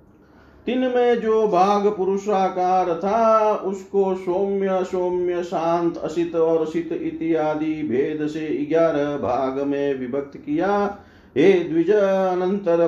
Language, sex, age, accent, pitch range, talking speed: Hindi, male, 40-59, native, 155-205 Hz, 105 wpm